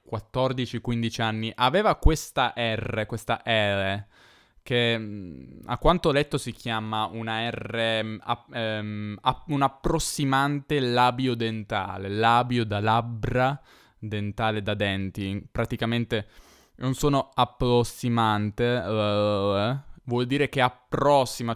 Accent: native